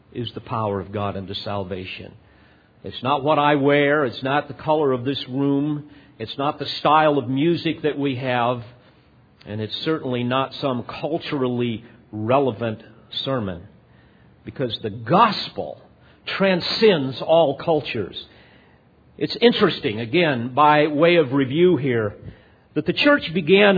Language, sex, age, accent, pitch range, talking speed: English, male, 50-69, American, 130-185 Hz, 135 wpm